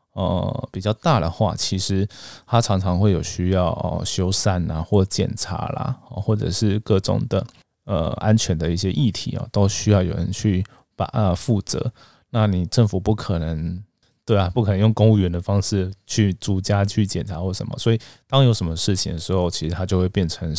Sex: male